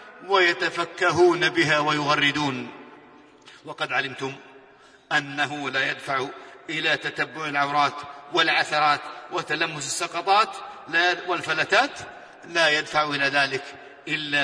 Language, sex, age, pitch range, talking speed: Arabic, male, 50-69, 145-180 Hz, 85 wpm